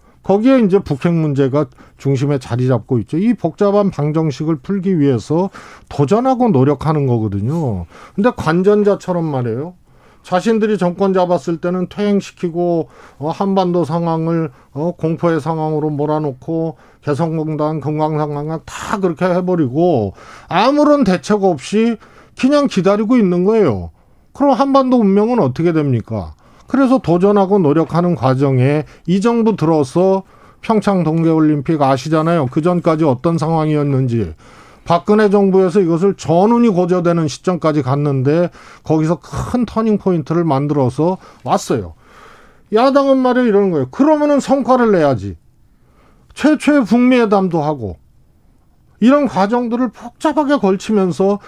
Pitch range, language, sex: 150-205 Hz, Korean, male